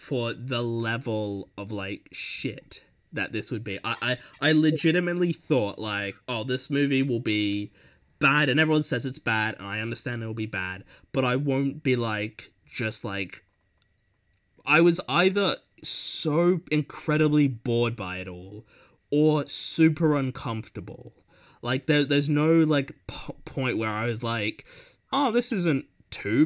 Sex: male